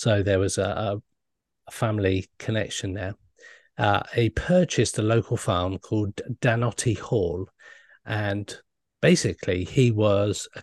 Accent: British